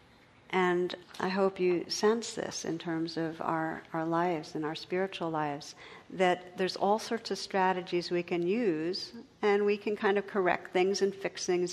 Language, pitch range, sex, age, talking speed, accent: English, 170-195 Hz, female, 60-79, 180 wpm, American